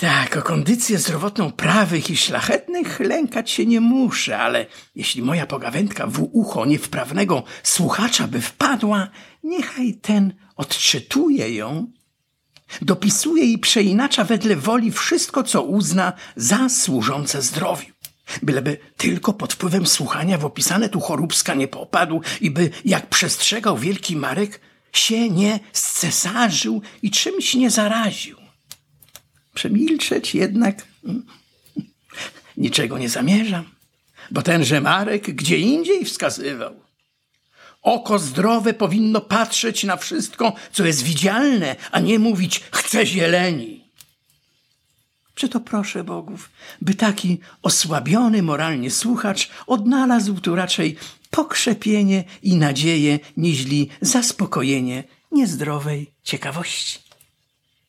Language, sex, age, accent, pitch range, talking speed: Polish, male, 50-69, native, 170-230 Hz, 110 wpm